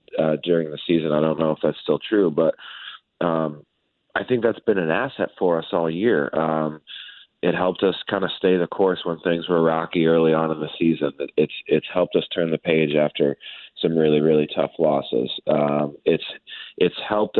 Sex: male